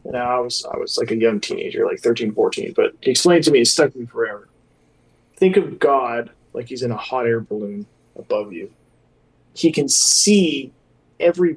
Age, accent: 20-39, American